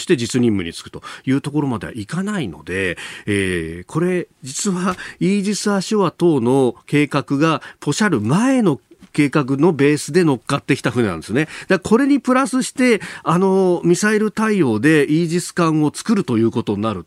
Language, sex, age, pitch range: Japanese, male, 40-59, 115-190 Hz